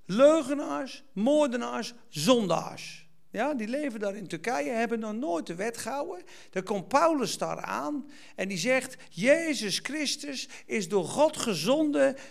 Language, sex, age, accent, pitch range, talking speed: Dutch, male, 50-69, Dutch, 230-320 Hz, 140 wpm